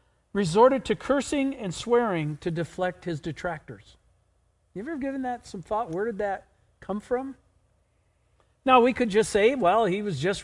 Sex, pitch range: male, 165-235 Hz